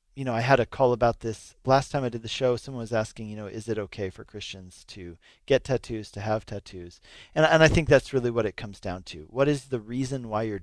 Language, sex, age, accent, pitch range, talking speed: English, male, 40-59, American, 110-130 Hz, 265 wpm